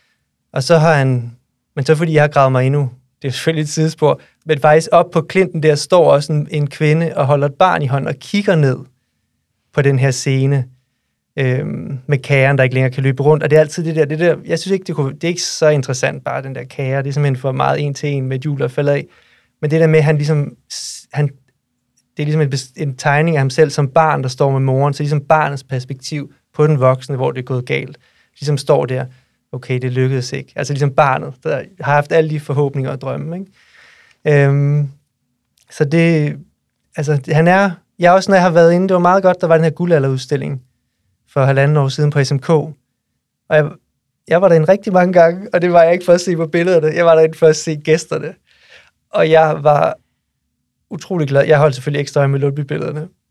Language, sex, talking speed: Danish, male, 230 wpm